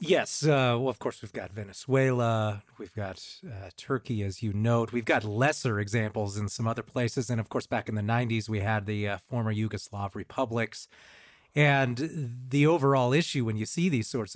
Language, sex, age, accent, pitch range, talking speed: English, male, 30-49, American, 110-140 Hz, 190 wpm